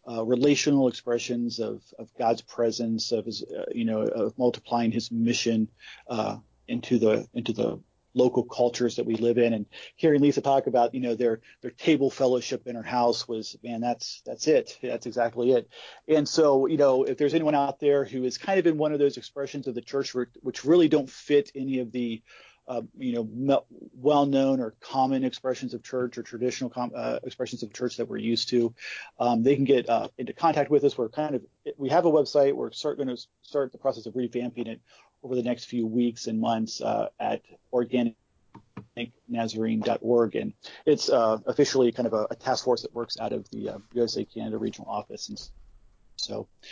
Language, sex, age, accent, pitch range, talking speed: English, male, 40-59, American, 115-135 Hz, 195 wpm